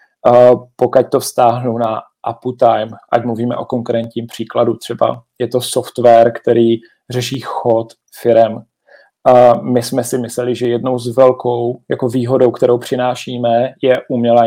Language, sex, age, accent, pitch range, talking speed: Czech, male, 40-59, native, 120-135 Hz, 135 wpm